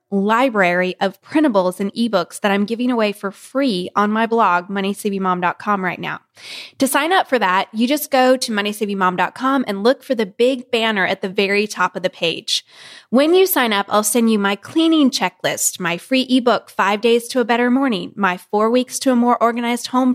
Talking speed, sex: 200 wpm, female